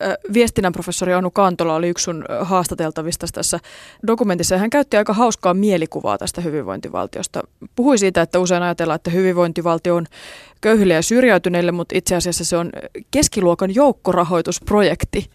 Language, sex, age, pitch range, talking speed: Finnish, female, 30-49, 175-205 Hz, 135 wpm